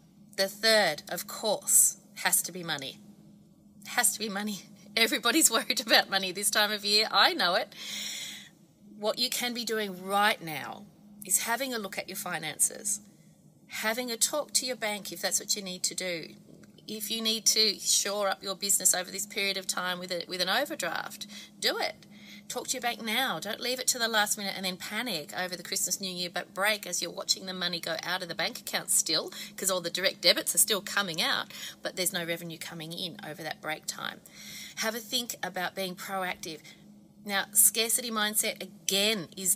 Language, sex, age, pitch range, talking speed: English, female, 30-49, 185-210 Hz, 205 wpm